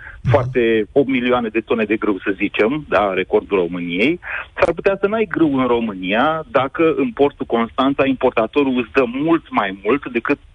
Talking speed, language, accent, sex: 170 wpm, Romanian, native, male